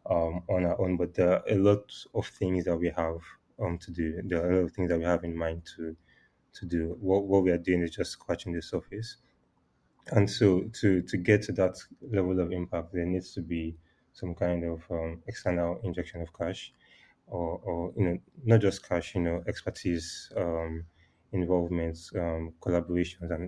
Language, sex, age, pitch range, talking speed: English, male, 30-49, 85-95 Hz, 200 wpm